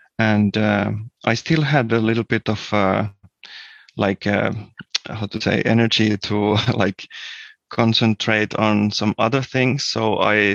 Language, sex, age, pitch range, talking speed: Finnish, male, 30-49, 105-120 Hz, 140 wpm